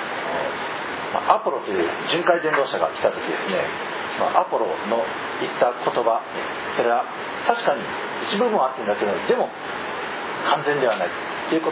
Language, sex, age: Japanese, male, 50-69